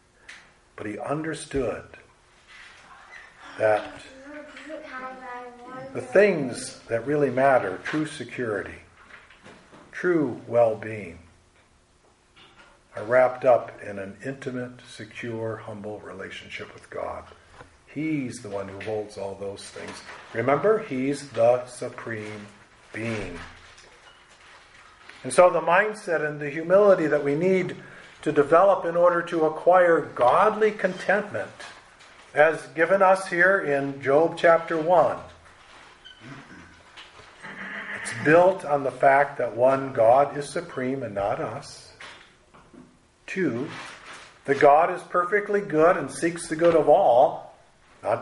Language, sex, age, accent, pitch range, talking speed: English, male, 50-69, American, 115-170 Hz, 110 wpm